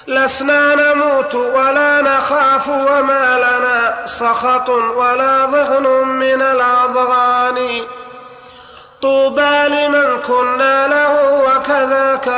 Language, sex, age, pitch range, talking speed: Arabic, male, 30-49, 245-270 Hz, 80 wpm